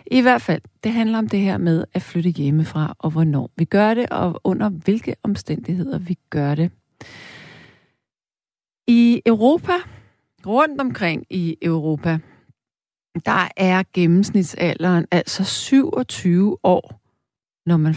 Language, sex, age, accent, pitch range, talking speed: Danish, female, 40-59, native, 155-205 Hz, 125 wpm